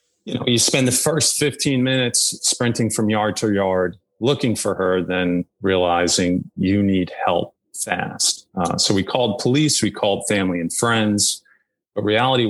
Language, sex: English, male